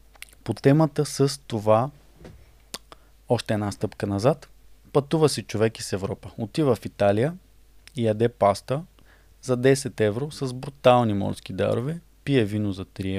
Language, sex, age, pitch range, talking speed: Bulgarian, male, 20-39, 110-140 Hz, 135 wpm